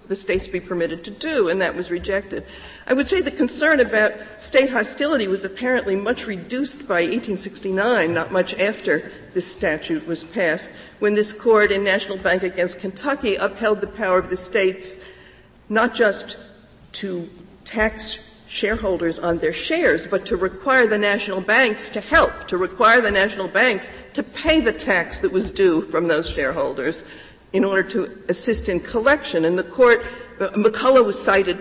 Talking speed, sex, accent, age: 170 wpm, female, American, 50-69